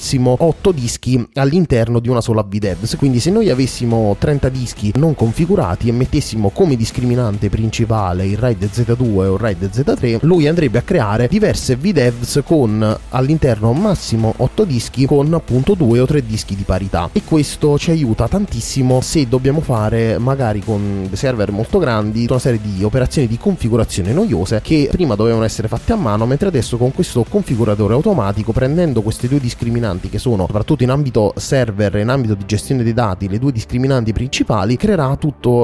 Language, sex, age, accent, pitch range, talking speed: Italian, male, 30-49, native, 110-140 Hz, 170 wpm